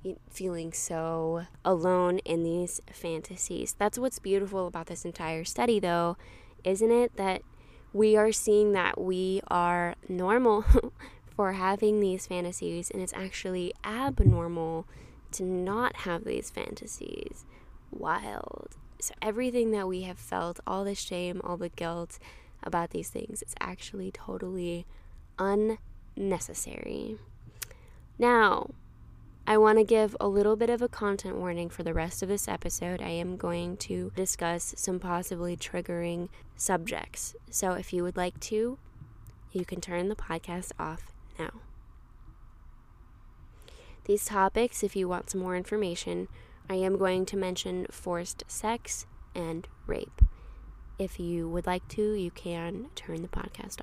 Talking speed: 140 wpm